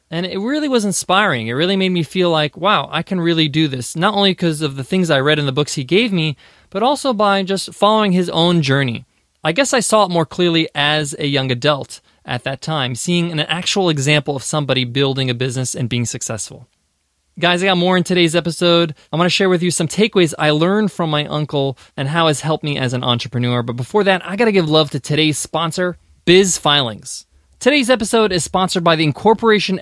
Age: 20-39